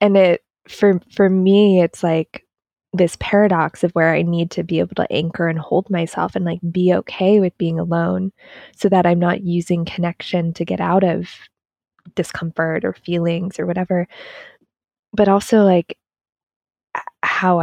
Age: 20-39